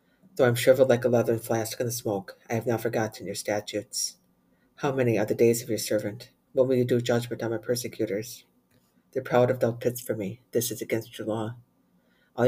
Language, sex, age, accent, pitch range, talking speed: English, female, 50-69, American, 110-125 Hz, 225 wpm